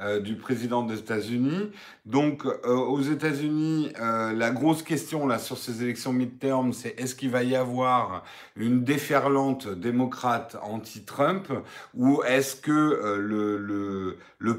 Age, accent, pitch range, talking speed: 50-69, French, 120-170 Hz, 130 wpm